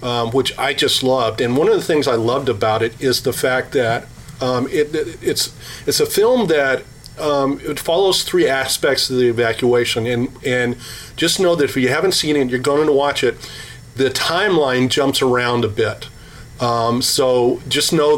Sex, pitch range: male, 120-140 Hz